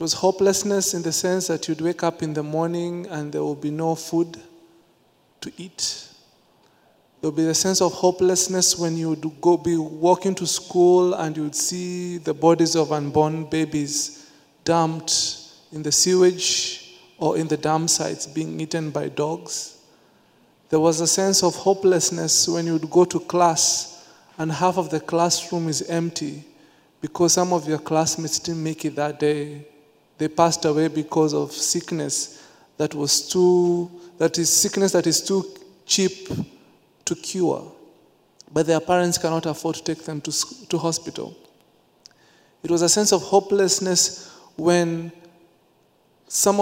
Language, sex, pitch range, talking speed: English, male, 160-180 Hz, 155 wpm